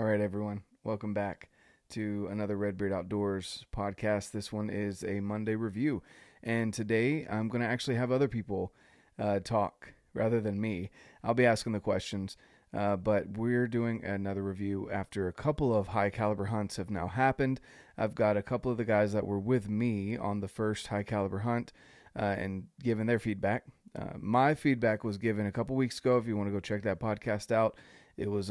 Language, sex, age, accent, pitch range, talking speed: English, male, 30-49, American, 100-115 Hz, 200 wpm